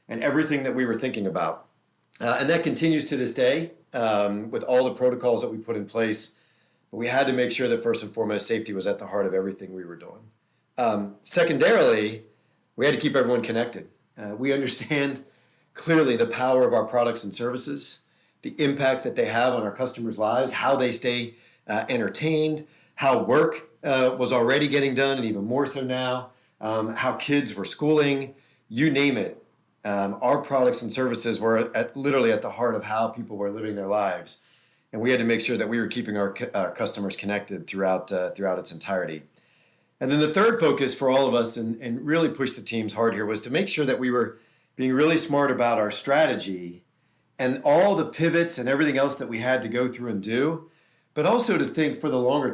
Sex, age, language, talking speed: male, 40-59, English, 210 wpm